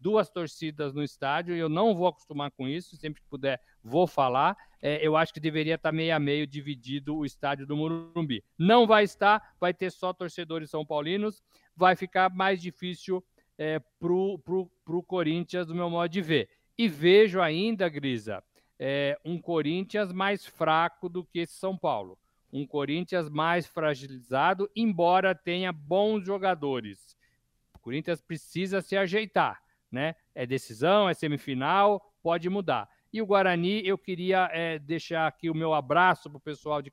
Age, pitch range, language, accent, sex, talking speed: 60-79, 150-185 Hz, Portuguese, Brazilian, male, 160 wpm